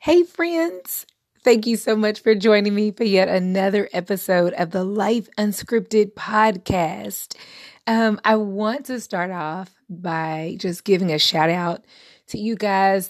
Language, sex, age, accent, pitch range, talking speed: English, female, 20-39, American, 170-220 Hz, 150 wpm